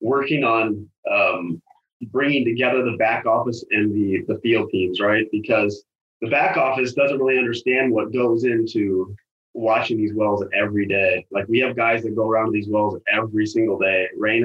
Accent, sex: American, male